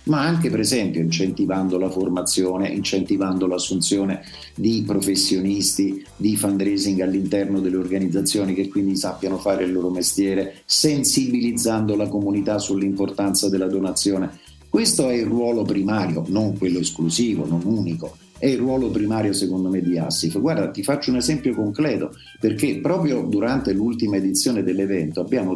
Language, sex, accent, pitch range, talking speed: Italian, male, native, 95-115 Hz, 140 wpm